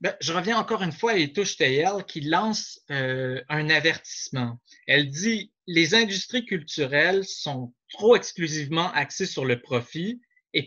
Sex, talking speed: male, 150 wpm